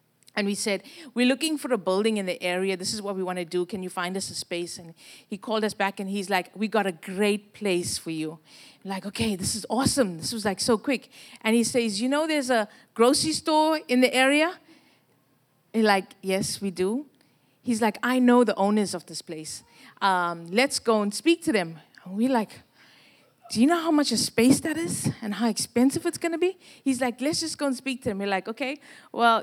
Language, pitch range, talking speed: English, 190-250 Hz, 230 wpm